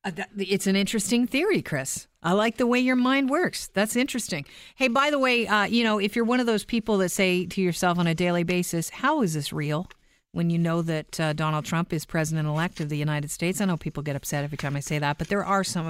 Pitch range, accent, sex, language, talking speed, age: 165-220 Hz, American, female, English, 255 wpm, 50-69